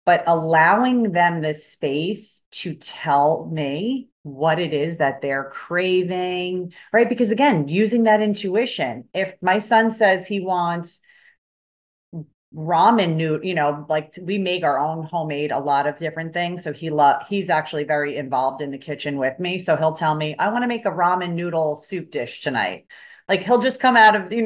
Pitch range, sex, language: 160-215 Hz, female, English